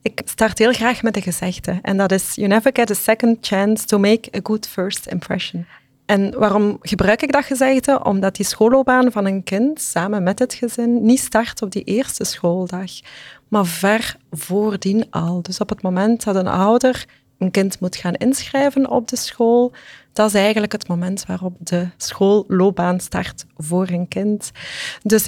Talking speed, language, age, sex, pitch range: 185 wpm, English, 30-49, female, 195-240 Hz